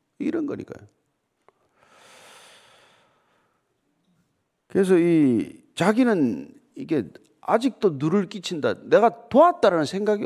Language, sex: Korean, male